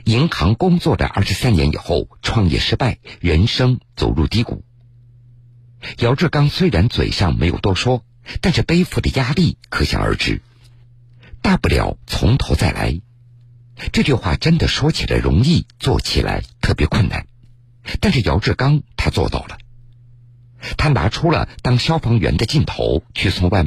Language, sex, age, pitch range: Chinese, male, 50-69, 100-125 Hz